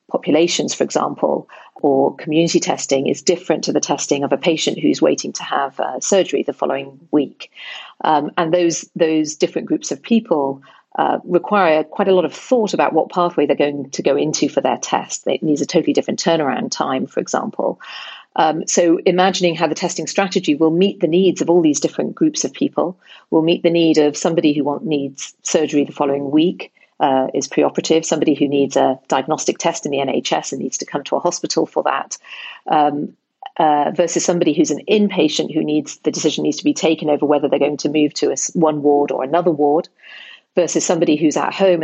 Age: 40-59